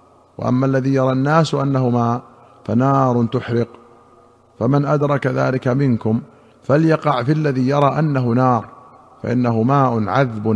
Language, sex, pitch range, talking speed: Arabic, male, 120-140 Hz, 120 wpm